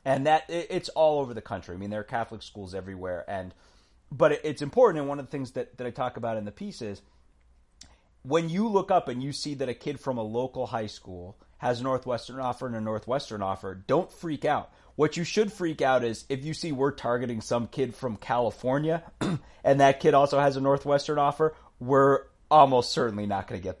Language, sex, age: English, male, 30-49